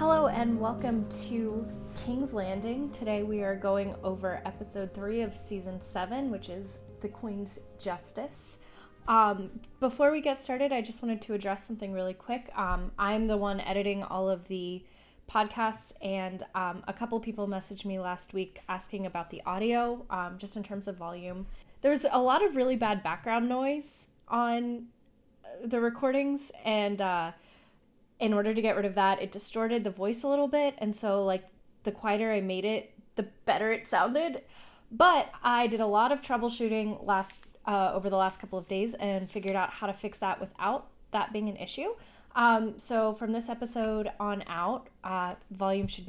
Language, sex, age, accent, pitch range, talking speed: English, female, 10-29, American, 190-230 Hz, 180 wpm